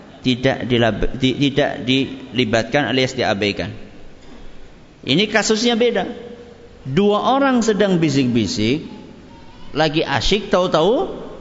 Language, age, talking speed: Malay, 50-69, 90 wpm